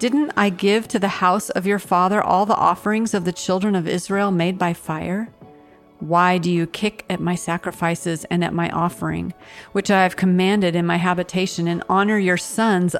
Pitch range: 175-195 Hz